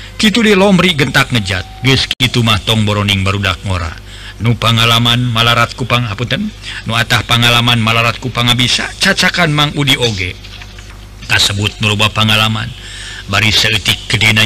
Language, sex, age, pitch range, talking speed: Indonesian, male, 50-69, 105-125 Hz, 140 wpm